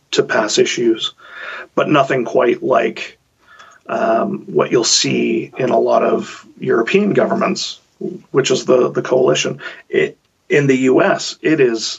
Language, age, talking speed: German, 30-49, 140 wpm